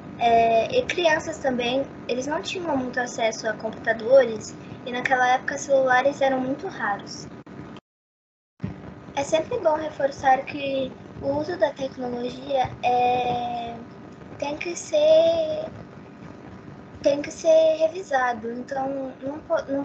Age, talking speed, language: 10-29, 120 wpm, Portuguese